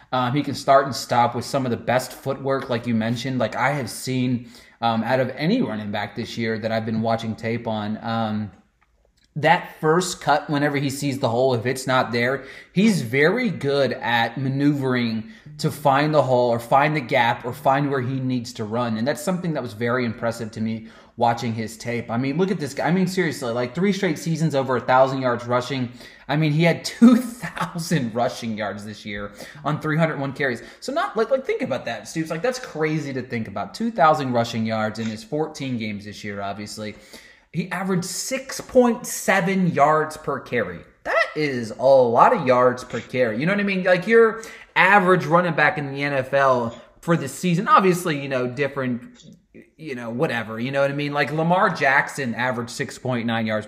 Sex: male